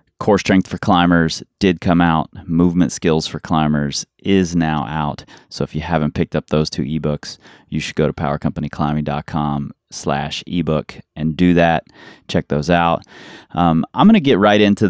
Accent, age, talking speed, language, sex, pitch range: American, 30-49, 170 wpm, English, male, 75-90 Hz